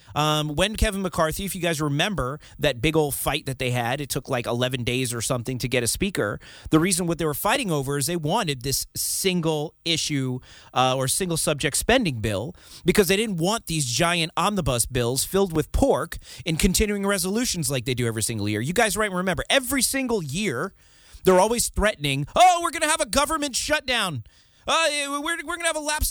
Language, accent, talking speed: English, American, 210 wpm